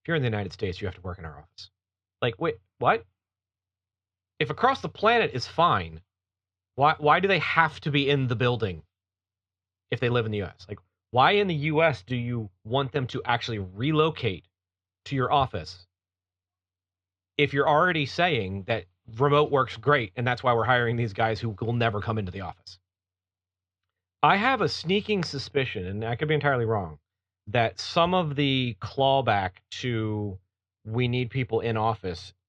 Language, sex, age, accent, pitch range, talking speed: English, male, 30-49, American, 95-130 Hz, 180 wpm